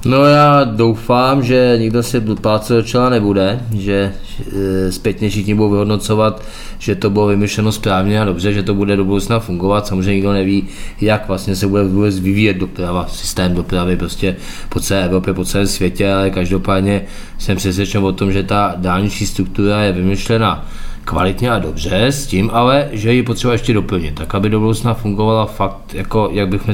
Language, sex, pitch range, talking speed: Czech, male, 95-110 Hz, 175 wpm